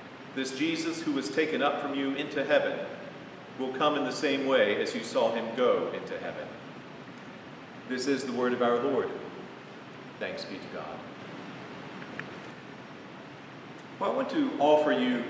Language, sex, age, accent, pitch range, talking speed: English, male, 40-59, American, 125-145 Hz, 160 wpm